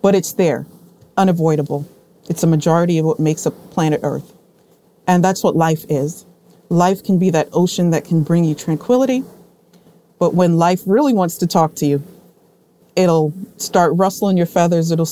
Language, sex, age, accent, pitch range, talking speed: English, female, 40-59, American, 160-195 Hz, 170 wpm